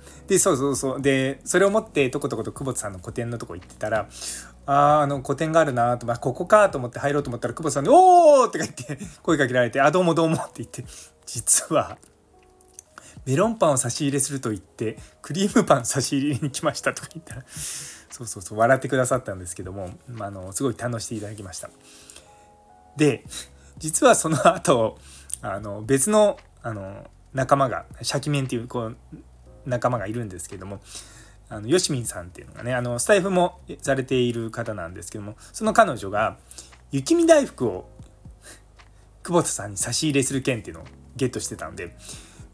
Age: 20-39